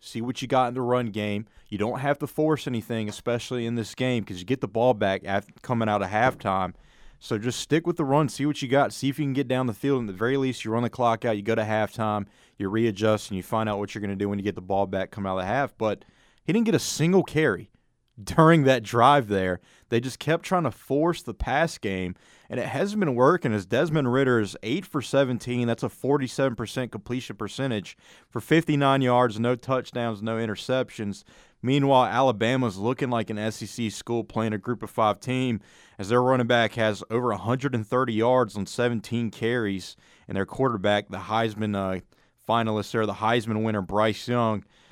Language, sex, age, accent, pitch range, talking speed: English, male, 30-49, American, 105-130 Hz, 220 wpm